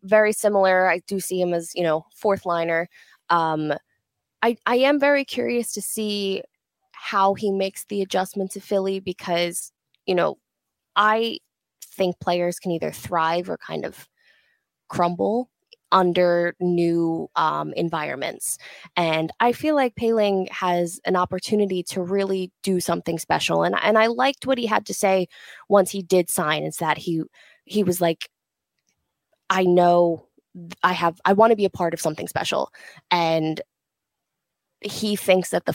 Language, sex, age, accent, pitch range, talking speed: English, female, 20-39, American, 170-210 Hz, 155 wpm